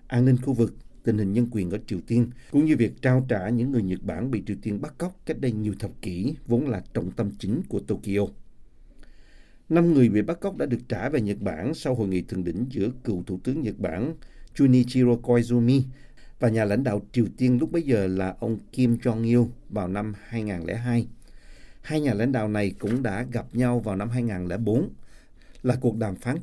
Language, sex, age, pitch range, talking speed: Vietnamese, male, 50-69, 100-130 Hz, 210 wpm